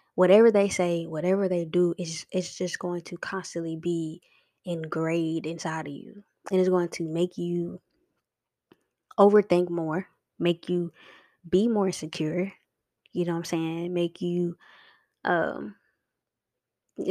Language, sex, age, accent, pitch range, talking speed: English, female, 20-39, American, 170-200 Hz, 135 wpm